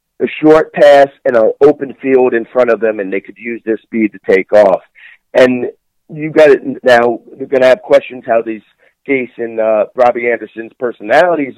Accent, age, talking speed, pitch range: American, 50-69, 200 wpm, 110-130 Hz